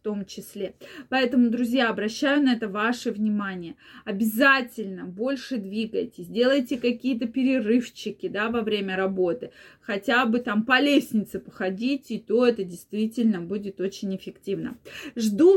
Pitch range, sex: 210-275 Hz, female